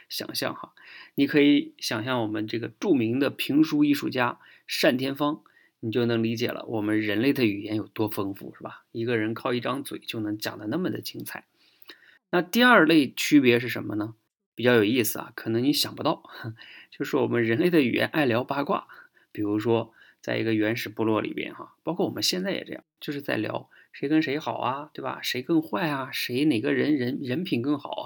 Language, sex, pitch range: Chinese, male, 110-150 Hz